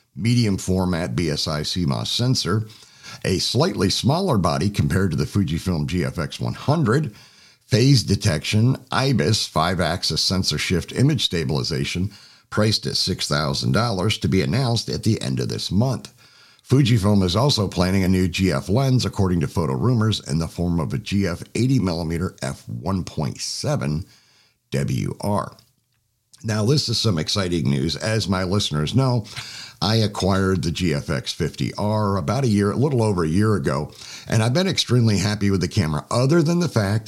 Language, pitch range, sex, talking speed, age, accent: English, 95-130 Hz, male, 155 wpm, 60-79, American